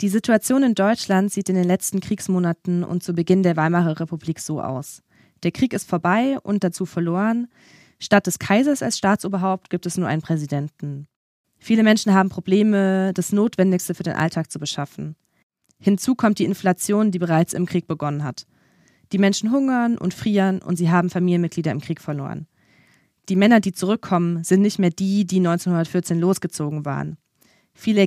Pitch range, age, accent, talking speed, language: 165-195 Hz, 20-39, German, 170 wpm, German